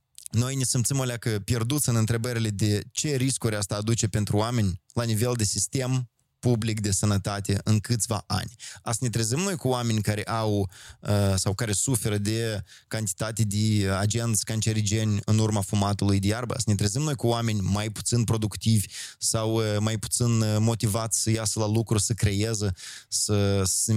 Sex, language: male, Romanian